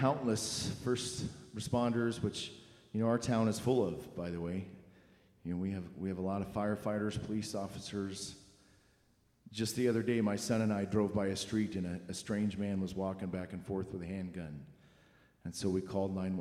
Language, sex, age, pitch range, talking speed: English, male, 40-59, 95-115 Hz, 205 wpm